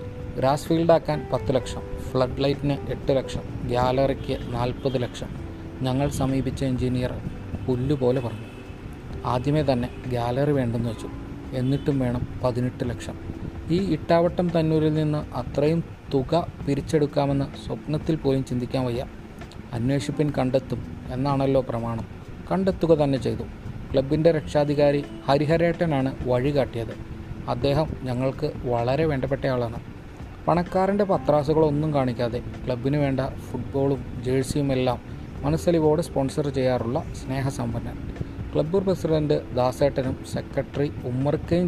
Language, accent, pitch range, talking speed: Malayalam, native, 125-145 Hz, 95 wpm